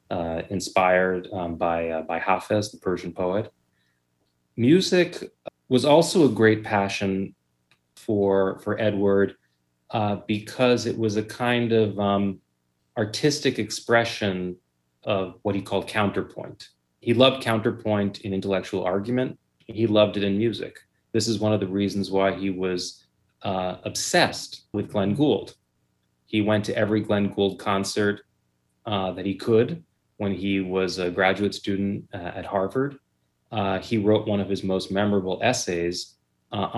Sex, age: male, 30-49